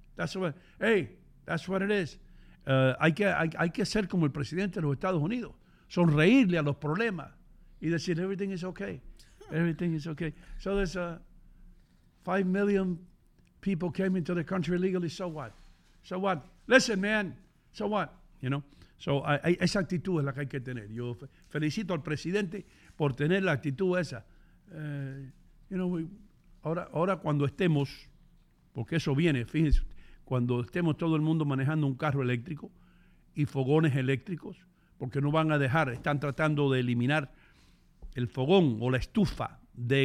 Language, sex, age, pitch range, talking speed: English, male, 60-79, 135-180 Hz, 170 wpm